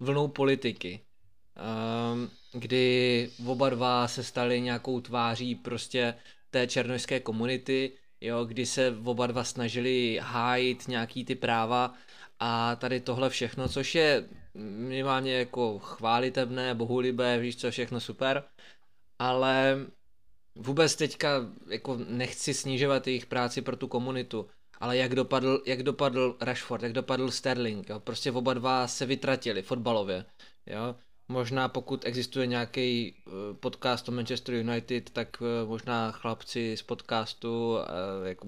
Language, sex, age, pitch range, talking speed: Czech, male, 20-39, 115-130 Hz, 130 wpm